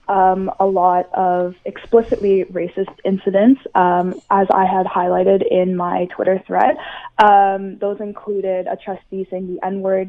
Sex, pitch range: female, 180-205 Hz